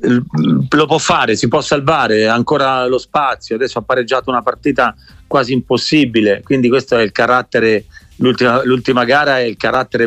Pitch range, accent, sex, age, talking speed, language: 115-145 Hz, native, male, 40-59, 155 wpm, Italian